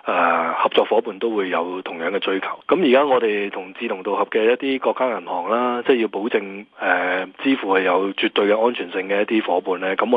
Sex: male